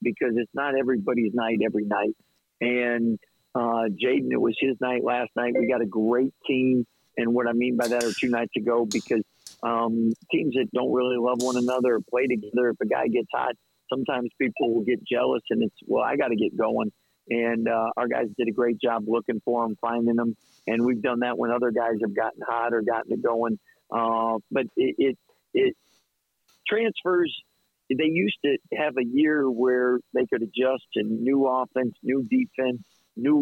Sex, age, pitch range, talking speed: male, 50-69, 115-130 Hz, 200 wpm